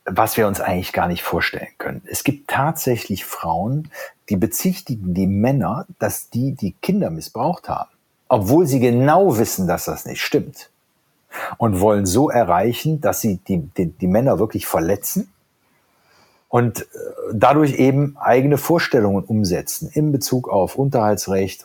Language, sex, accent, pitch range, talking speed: German, male, German, 100-155 Hz, 140 wpm